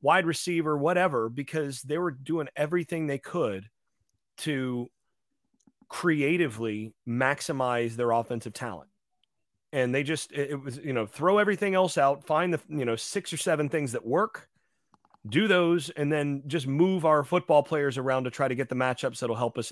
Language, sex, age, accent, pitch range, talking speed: English, male, 30-49, American, 125-170 Hz, 170 wpm